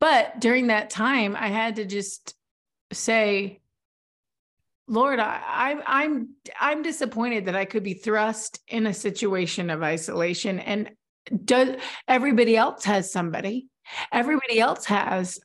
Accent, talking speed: American, 130 wpm